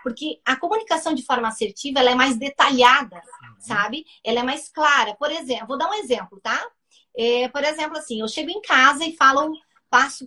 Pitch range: 240-315 Hz